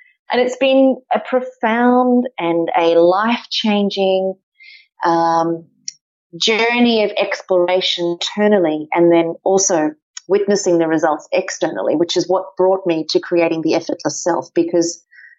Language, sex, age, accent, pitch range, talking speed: English, female, 30-49, Australian, 170-205 Hz, 115 wpm